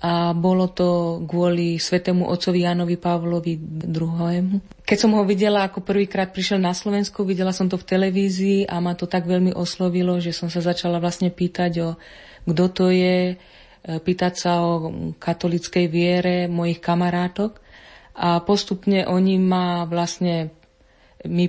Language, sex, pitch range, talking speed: Slovak, female, 170-185 Hz, 145 wpm